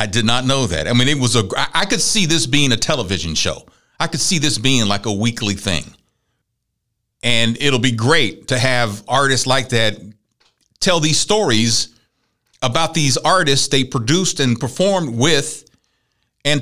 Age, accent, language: 50-69, American, English